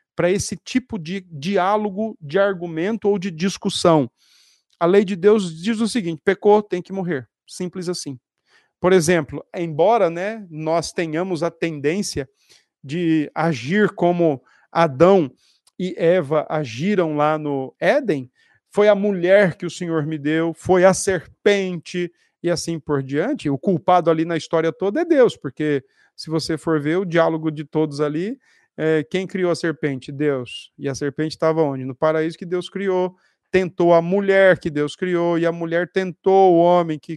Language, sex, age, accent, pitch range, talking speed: Portuguese, male, 40-59, Brazilian, 155-190 Hz, 165 wpm